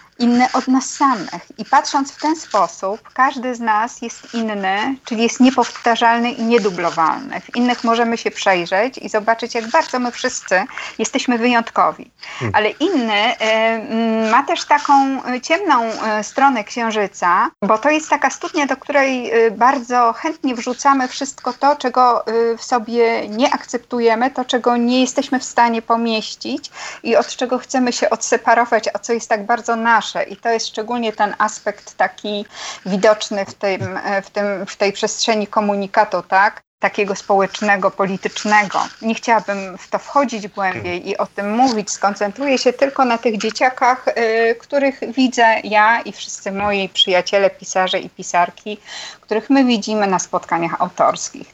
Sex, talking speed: female, 145 wpm